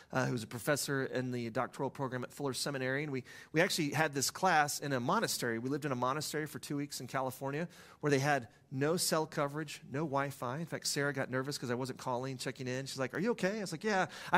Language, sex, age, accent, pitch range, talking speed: English, male, 30-49, American, 135-190 Hz, 245 wpm